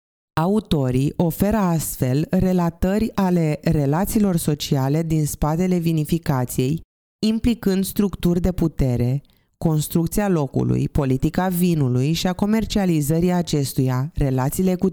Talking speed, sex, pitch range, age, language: 95 wpm, female, 140-180 Hz, 20-39, Romanian